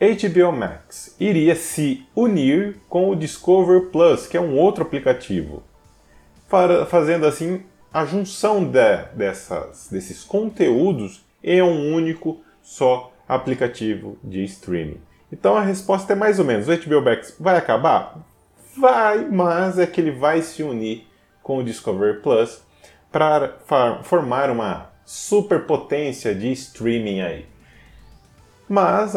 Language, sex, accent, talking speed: Portuguese, male, Brazilian, 120 wpm